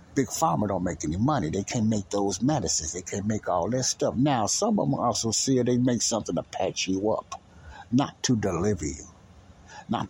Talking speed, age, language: 210 wpm, 60-79, English